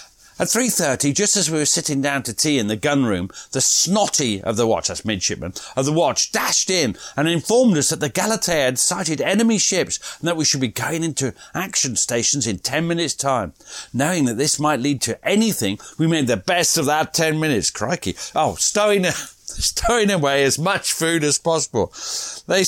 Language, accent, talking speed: English, British, 200 wpm